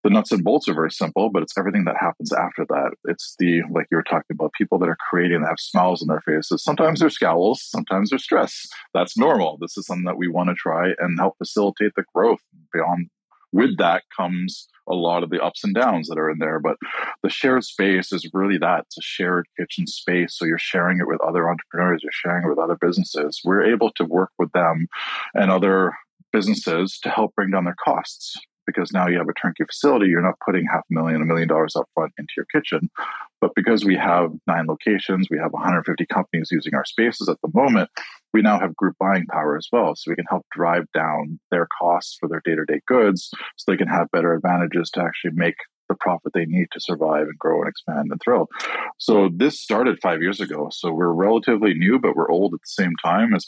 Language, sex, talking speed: English, male, 230 wpm